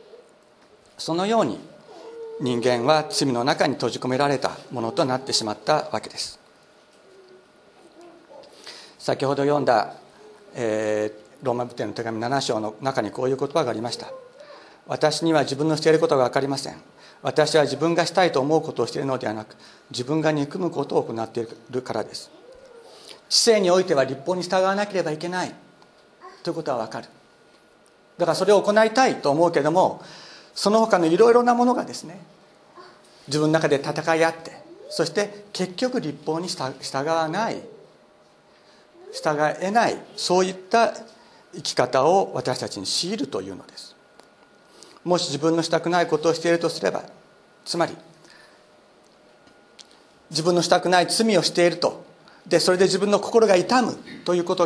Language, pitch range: Japanese, 140-205 Hz